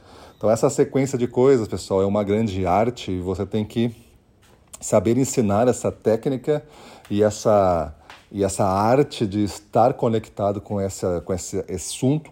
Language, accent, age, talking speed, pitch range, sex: Portuguese, Brazilian, 40-59, 140 wpm, 95-115 Hz, male